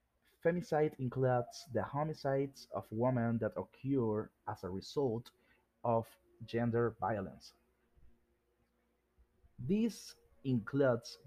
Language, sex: English, male